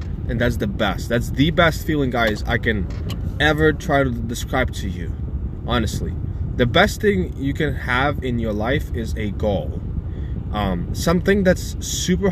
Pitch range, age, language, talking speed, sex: 95-140 Hz, 20-39, English, 165 wpm, male